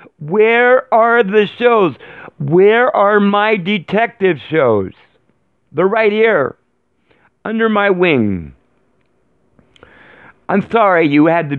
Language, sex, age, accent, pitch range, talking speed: English, male, 60-79, American, 135-200 Hz, 105 wpm